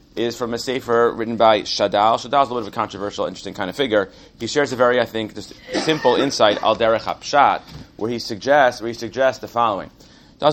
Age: 30-49